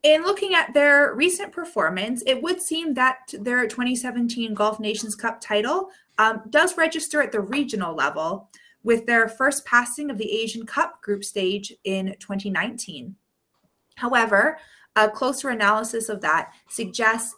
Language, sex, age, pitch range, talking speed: English, female, 20-39, 195-255 Hz, 145 wpm